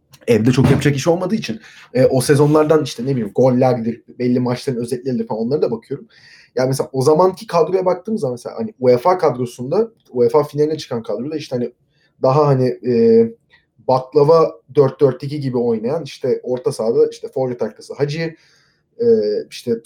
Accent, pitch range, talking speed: native, 130-185 Hz, 165 wpm